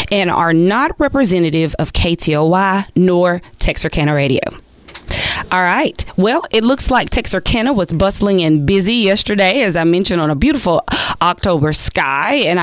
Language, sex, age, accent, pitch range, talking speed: English, female, 20-39, American, 160-195 Hz, 145 wpm